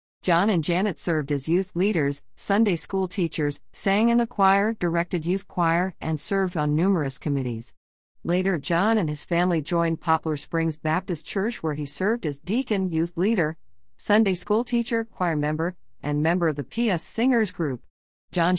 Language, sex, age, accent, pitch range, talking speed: English, female, 50-69, American, 140-180 Hz, 170 wpm